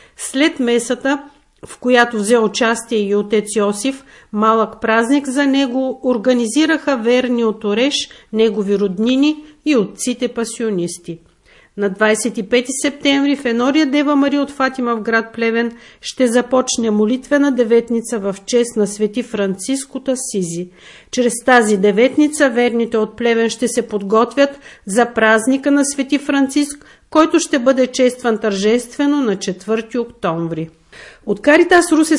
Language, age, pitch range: Bulgarian, 50-69, 215-270 Hz